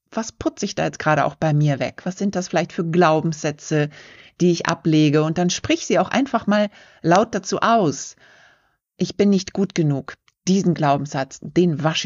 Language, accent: German, German